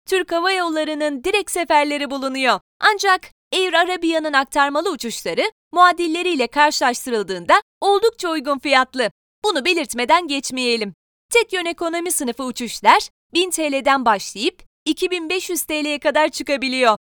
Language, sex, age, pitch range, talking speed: Turkish, female, 30-49, 280-370 Hz, 110 wpm